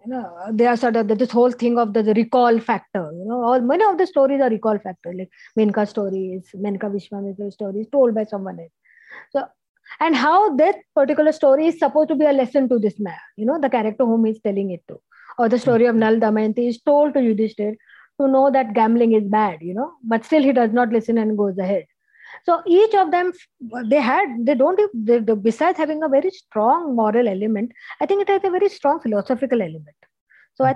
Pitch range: 215-275 Hz